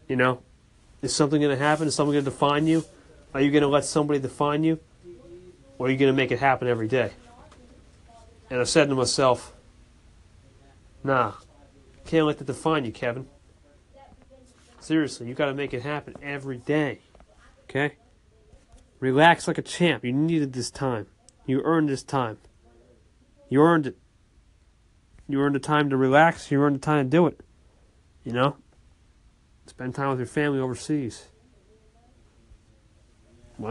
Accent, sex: American, male